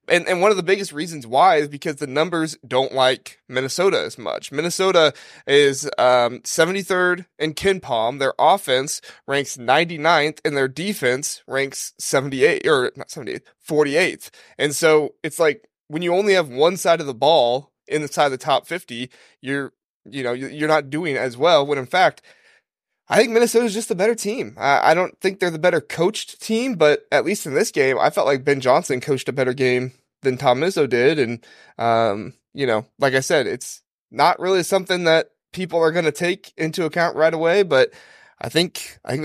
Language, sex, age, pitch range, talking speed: English, male, 20-39, 130-175 Hz, 200 wpm